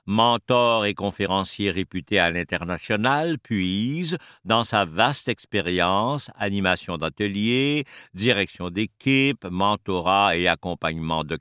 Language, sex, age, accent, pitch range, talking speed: French, male, 60-79, French, 100-140 Hz, 100 wpm